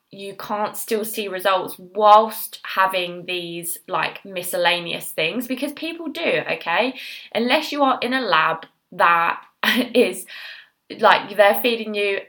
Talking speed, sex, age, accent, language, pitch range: 130 wpm, female, 20-39, British, English, 180-230 Hz